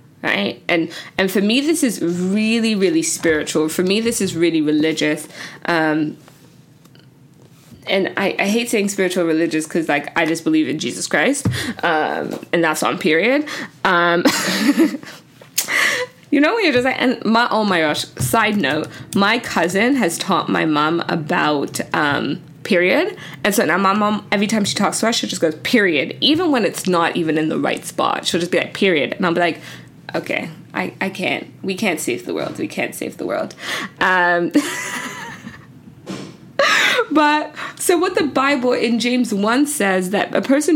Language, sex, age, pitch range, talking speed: English, female, 20-39, 165-245 Hz, 175 wpm